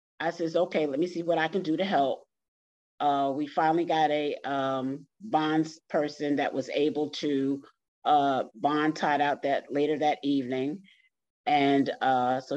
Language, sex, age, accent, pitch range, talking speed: English, female, 40-59, American, 140-190 Hz, 165 wpm